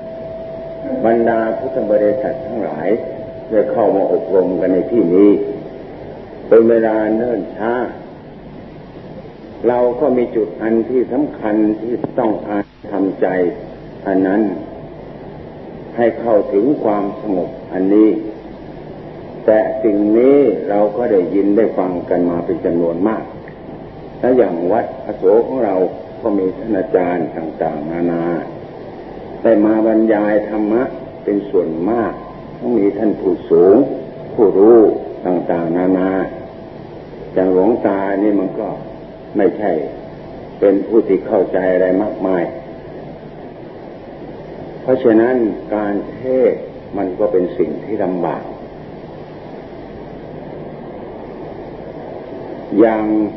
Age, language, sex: 50-69, Thai, male